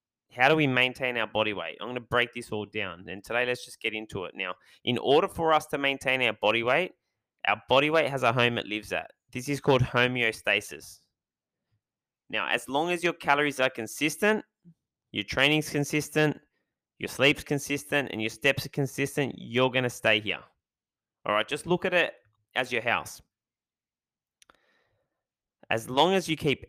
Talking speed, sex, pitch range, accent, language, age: 185 wpm, male, 110-145 Hz, Australian, English, 20-39